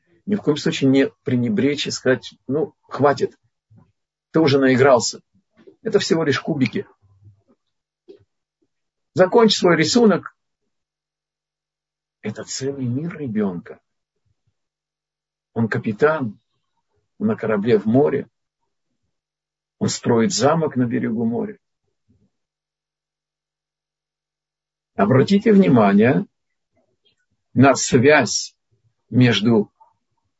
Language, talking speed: Russian, 85 wpm